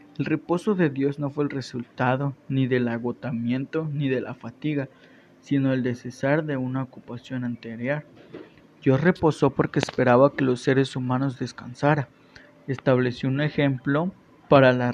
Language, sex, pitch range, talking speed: Spanish, male, 125-150 Hz, 150 wpm